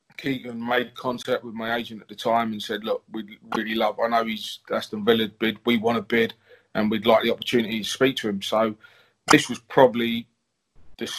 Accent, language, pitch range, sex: British, English, 110-125 Hz, male